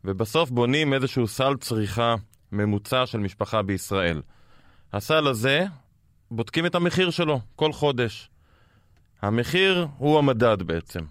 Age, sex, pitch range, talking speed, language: 20-39, male, 105-140 Hz, 115 wpm, Hebrew